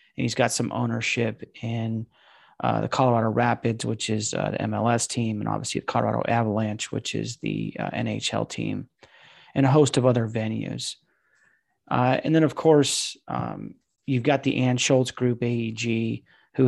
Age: 30-49